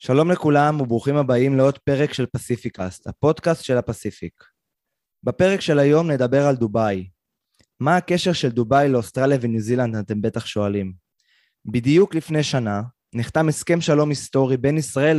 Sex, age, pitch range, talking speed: male, 20-39, 125-155 Hz, 140 wpm